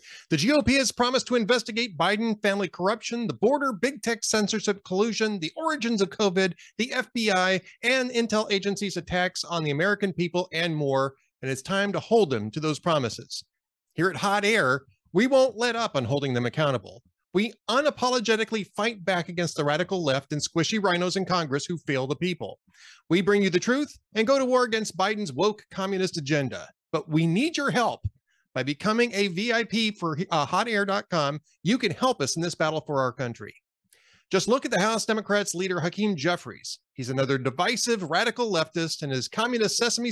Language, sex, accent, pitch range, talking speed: English, male, American, 155-230 Hz, 185 wpm